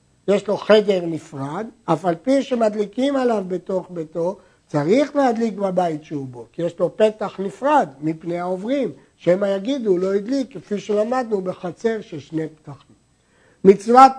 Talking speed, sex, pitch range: 150 wpm, male, 185-235 Hz